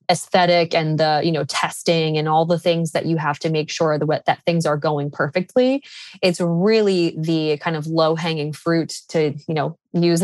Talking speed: 195 wpm